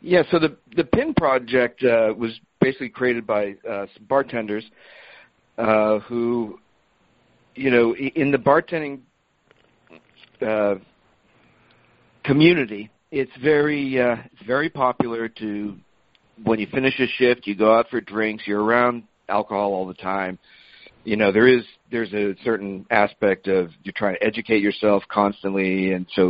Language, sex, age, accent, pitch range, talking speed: English, male, 50-69, American, 100-125 Hz, 145 wpm